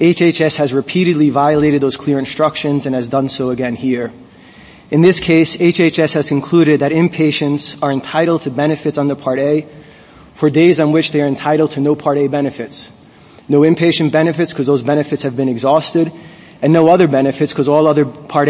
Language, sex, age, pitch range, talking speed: English, male, 20-39, 135-155 Hz, 185 wpm